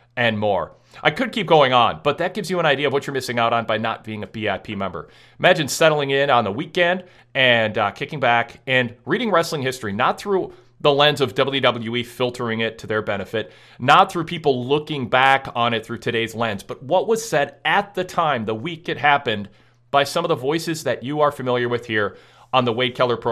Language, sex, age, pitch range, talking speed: English, male, 40-59, 115-160 Hz, 225 wpm